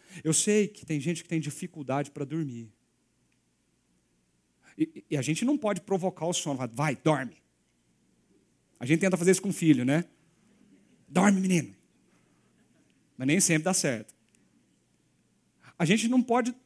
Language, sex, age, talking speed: Portuguese, male, 40-59, 150 wpm